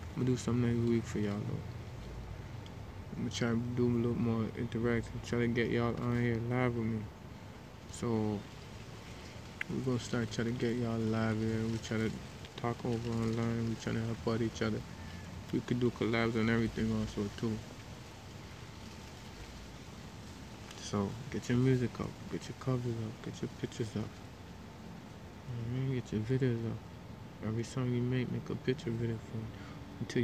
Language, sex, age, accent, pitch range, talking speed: English, male, 20-39, American, 110-125 Hz, 175 wpm